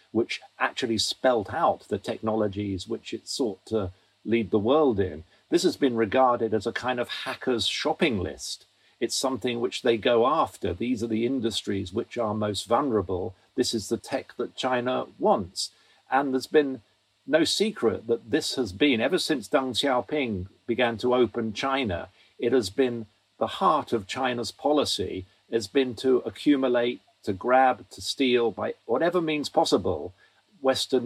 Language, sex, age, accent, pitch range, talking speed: English, male, 50-69, British, 115-135 Hz, 160 wpm